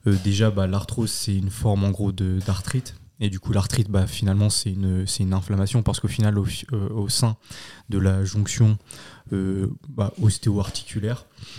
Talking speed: 180 wpm